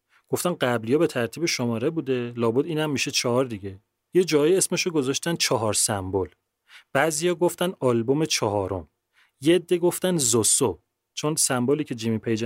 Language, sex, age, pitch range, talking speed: Persian, male, 30-49, 115-155 Hz, 150 wpm